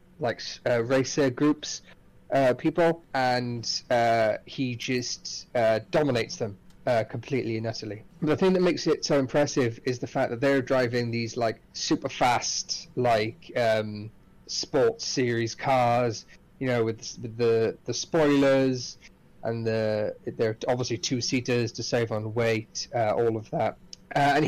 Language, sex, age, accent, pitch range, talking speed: English, male, 30-49, British, 115-145 Hz, 150 wpm